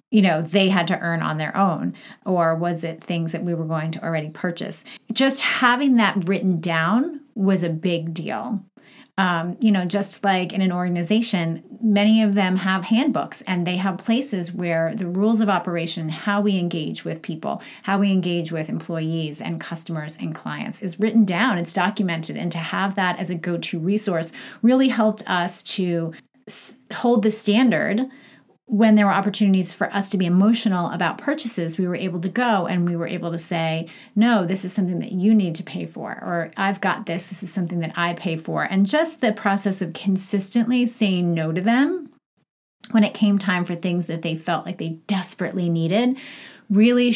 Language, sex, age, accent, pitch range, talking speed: English, female, 30-49, American, 170-215 Hz, 195 wpm